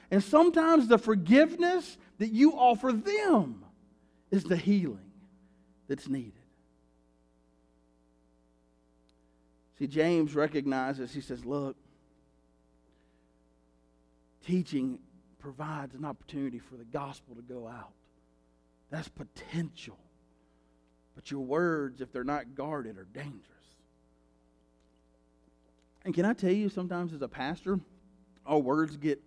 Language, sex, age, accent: English, male, 50-69, American